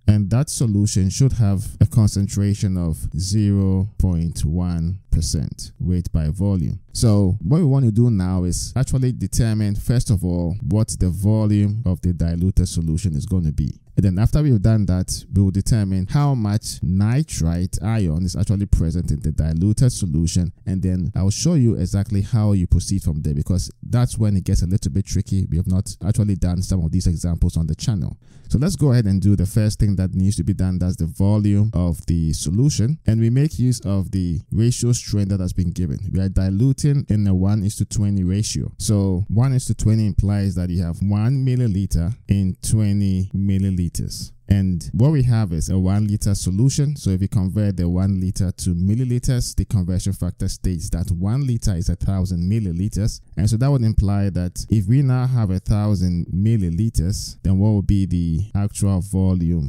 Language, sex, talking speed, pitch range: English, male, 195 wpm, 90-110 Hz